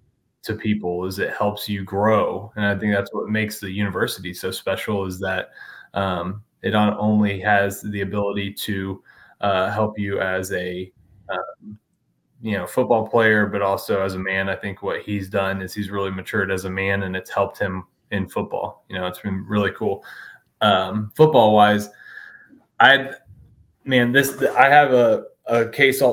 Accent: American